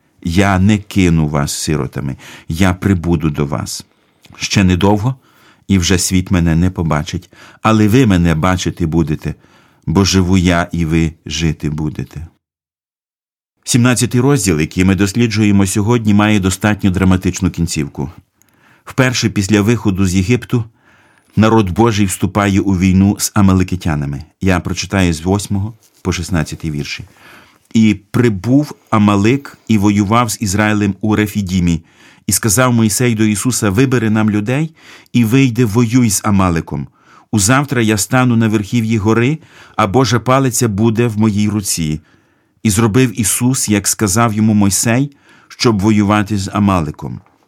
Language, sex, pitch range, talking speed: Ukrainian, male, 95-120 Hz, 130 wpm